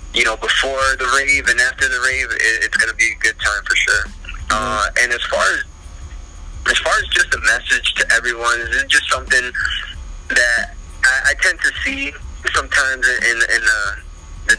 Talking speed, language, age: 200 wpm, English, 20-39